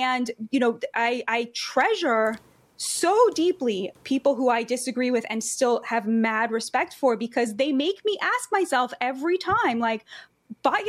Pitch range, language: 235-315 Hz, English